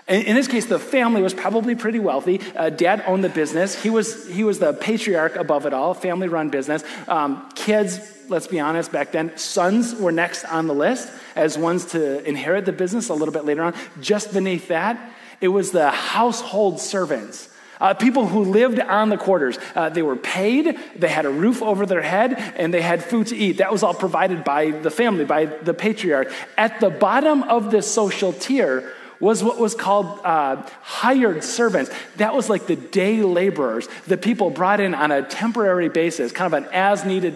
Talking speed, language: 200 wpm, English